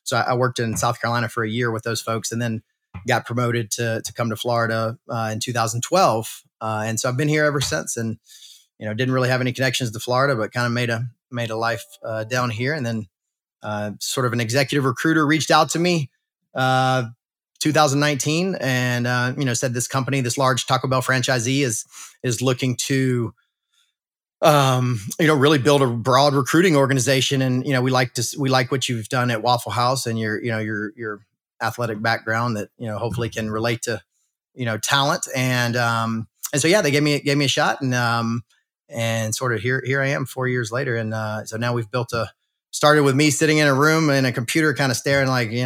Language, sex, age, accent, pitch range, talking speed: English, male, 30-49, American, 115-140 Hz, 225 wpm